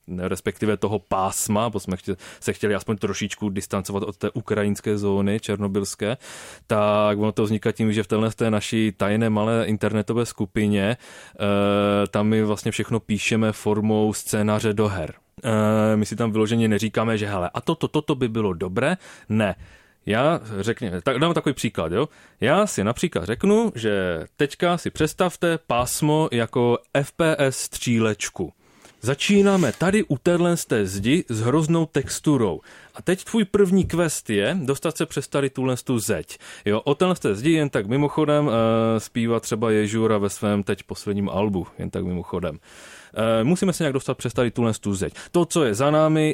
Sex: male